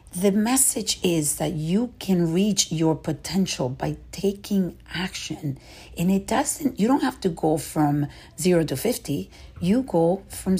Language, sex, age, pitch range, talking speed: English, female, 50-69, 145-185 Hz, 155 wpm